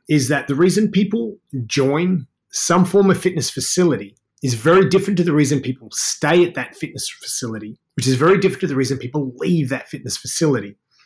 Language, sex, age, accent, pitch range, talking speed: English, male, 30-49, Australian, 125-170 Hz, 190 wpm